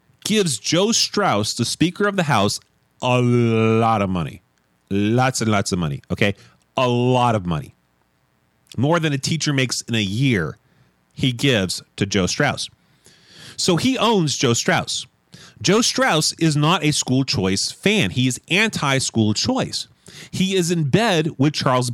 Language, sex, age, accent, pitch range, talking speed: English, male, 30-49, American, 120-195 Hz, 160 wpm